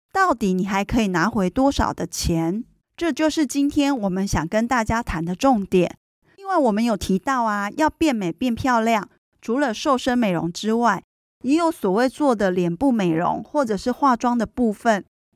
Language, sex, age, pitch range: Chinese, female, 20-39, 210-270 Hz